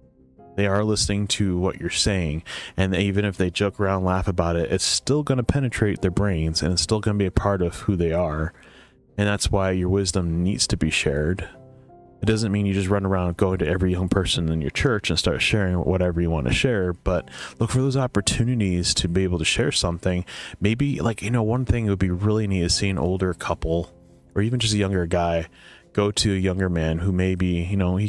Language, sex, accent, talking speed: English, male, American, 235 wpm